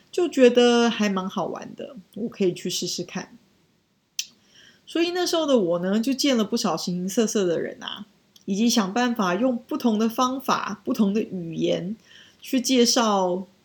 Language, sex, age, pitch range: Chinese, female, 20-39, 190-235 Hz